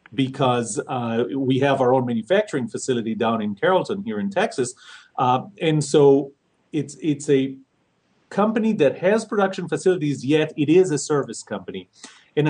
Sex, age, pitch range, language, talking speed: male, 40-59, 125-165 Hz, English, 155 wpm